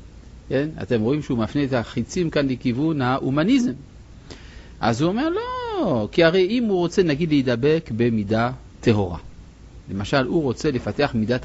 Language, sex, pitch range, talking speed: Hebrew, male, 105-160 Hz, 145 wpm